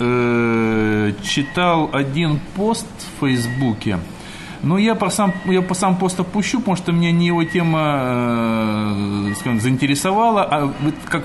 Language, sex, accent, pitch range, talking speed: Russian, male, native, 125-180 Hz, 125 wpm